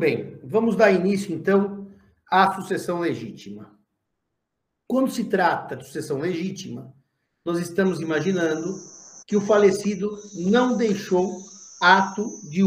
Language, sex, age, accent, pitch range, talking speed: Portuguese, male, 50-69, Brazilian, 170-200 Hz, 115 wpm